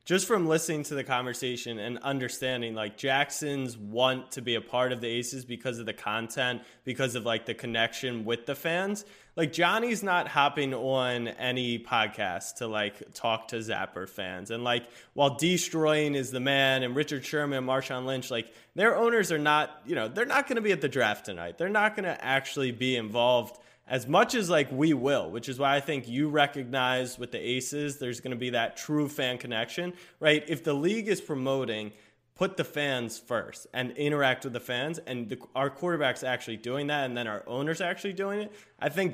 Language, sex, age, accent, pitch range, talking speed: English, male, 20-39, American, 120-150 Hz, 205 wpm